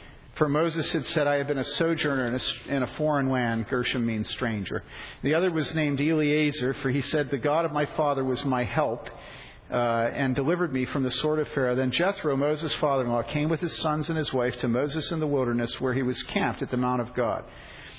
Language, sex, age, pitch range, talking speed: English, male, 50-69, 125-150 Hz, 225 wpm